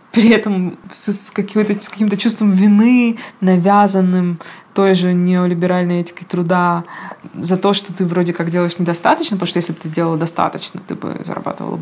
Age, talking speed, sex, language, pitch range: 20-39, 155 wpm, female, Russian, 175-205 Hz